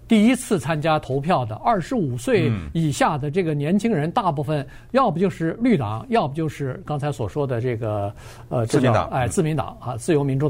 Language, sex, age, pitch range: Chinese, male, 50-69, 125-175 Hz